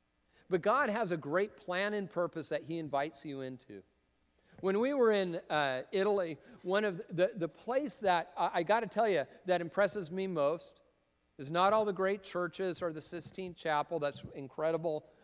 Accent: American